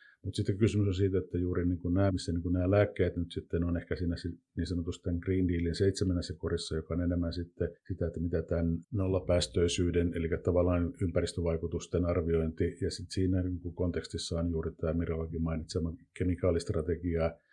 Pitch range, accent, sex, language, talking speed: 85-95 Hz, native, male, Finnish, 170 wpm